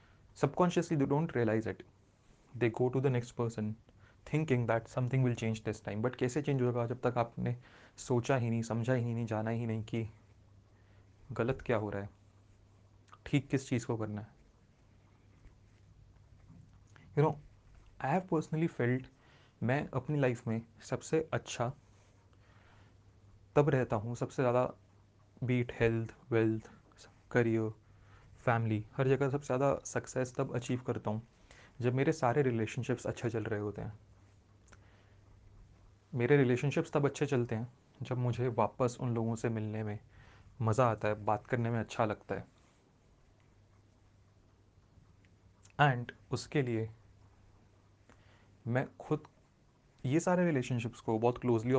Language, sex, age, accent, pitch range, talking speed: Hindi, male, 30-49, native, 105-125 Hz, 140 wpm